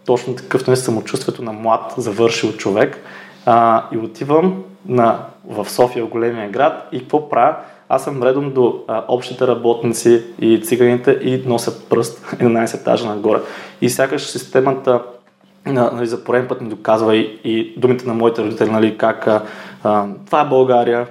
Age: 20-39